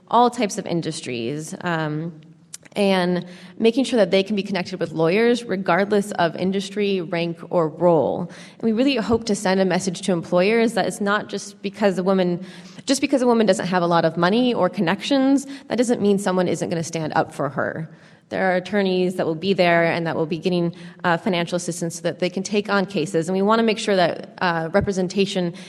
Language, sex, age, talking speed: English, female, 20-39, 215 wpm